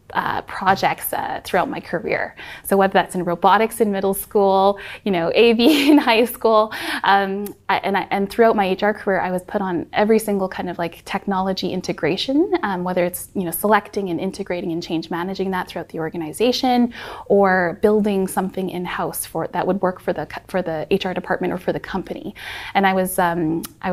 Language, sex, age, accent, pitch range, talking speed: English, female, 20-39, American, 180-215 Hz, 195 wpm